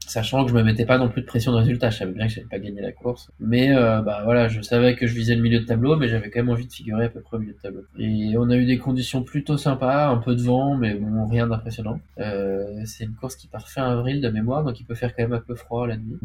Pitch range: 110-125 Hz